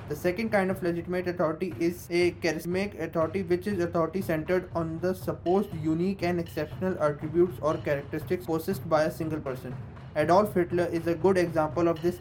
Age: 20-39